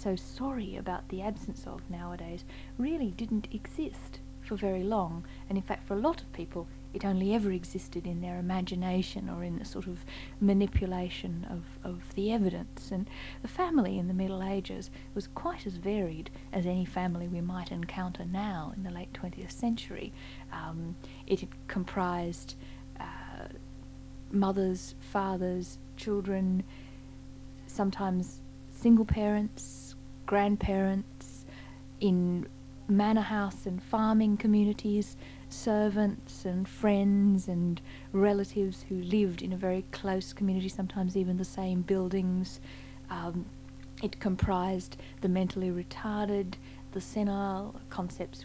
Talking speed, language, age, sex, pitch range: 130 wpm, English, 40-59, female, 130-200 Hz